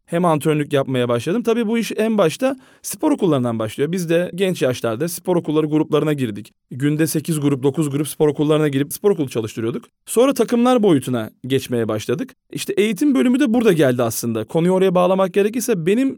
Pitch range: 140-200 Hz